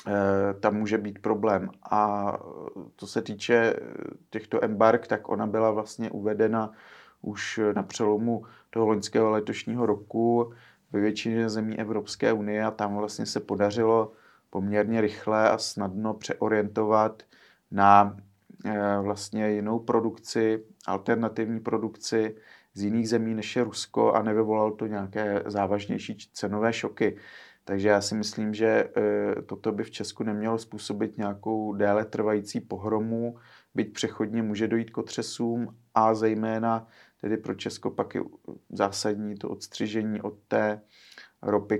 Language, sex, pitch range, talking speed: Czech, male, 105-110 Hz, 130 wpm